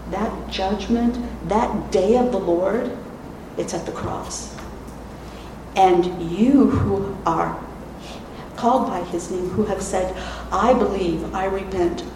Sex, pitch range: female, 170-210 Hz